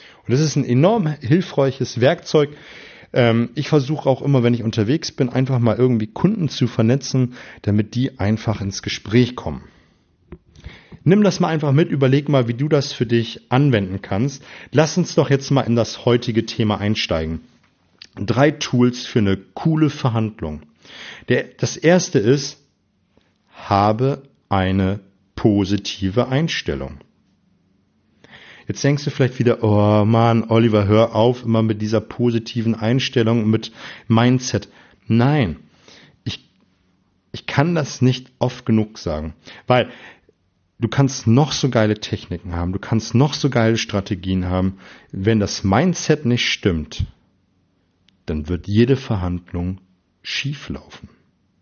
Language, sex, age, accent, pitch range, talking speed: German, male, 40-59, German, 100-135 Hz, 135 wpm